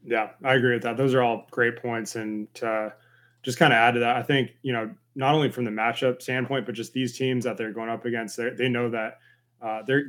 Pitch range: 110-125 Hz